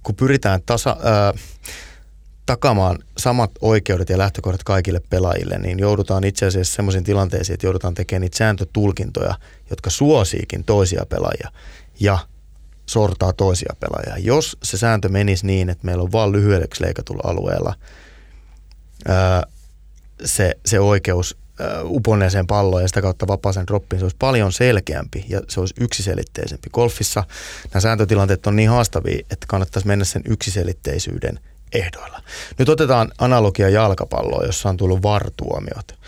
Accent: native